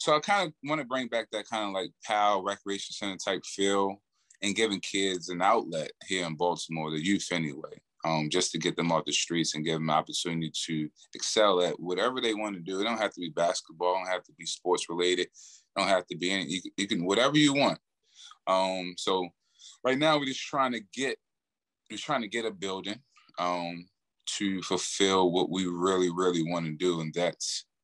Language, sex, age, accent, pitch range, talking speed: English, male, 20-39, American, 80-100 Hz, 220 wpm